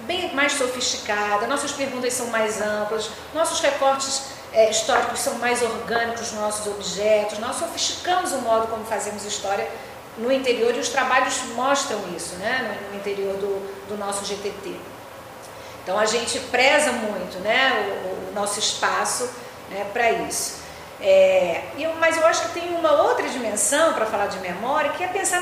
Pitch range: 215-280 Hz